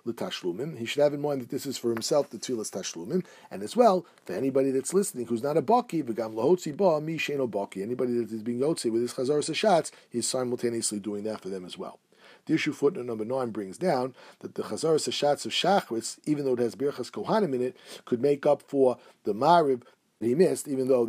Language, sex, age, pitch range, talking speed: English, male, 50-69, 115-145 Hz, 210 wpm